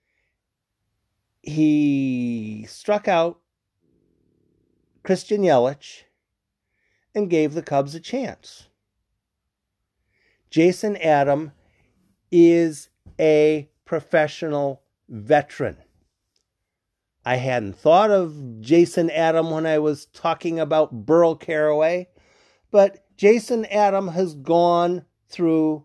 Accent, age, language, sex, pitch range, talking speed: American, 40-59, English, male, 110-180 Hz, 85 wpm